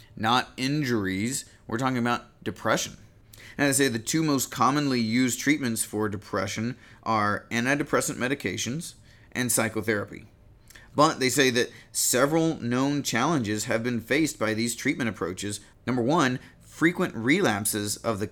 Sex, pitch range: male, 105-130 Hz